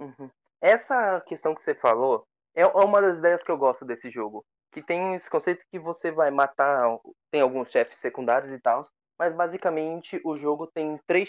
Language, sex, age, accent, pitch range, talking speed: Portuguese, male, 20-39, Brazilian, 140-180 Hz, 185 wpm